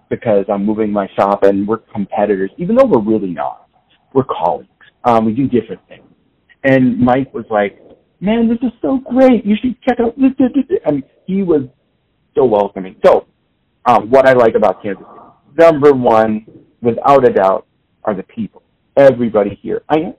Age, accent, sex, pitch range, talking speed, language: 40-59, American, male, 110-155 Hz, 180 wpm, English